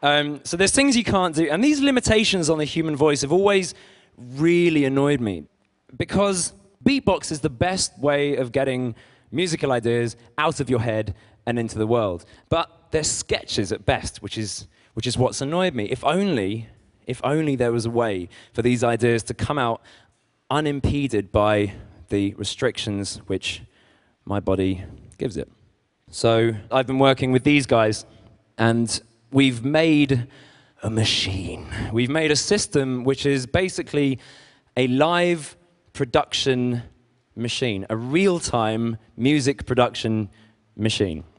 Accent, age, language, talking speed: British, 20-39, Russian, 145 wpm